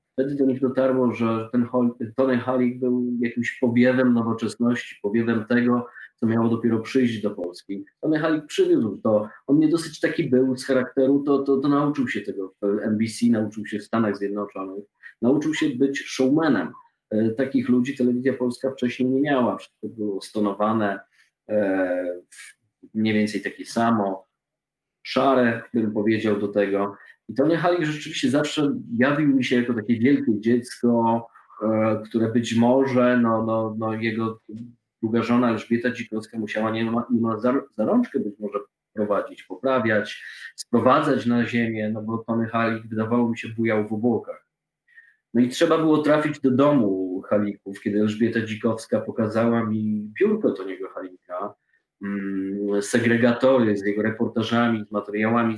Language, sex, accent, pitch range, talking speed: Polish, male, native, 110-125 Hz, 150 wpm